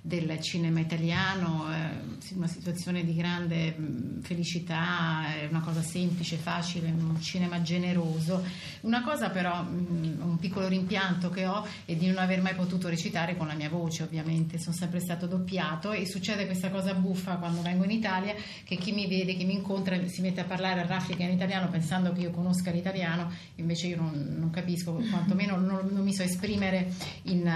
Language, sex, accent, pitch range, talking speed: Italian, female, native, 165-185 Hz, 175 wpm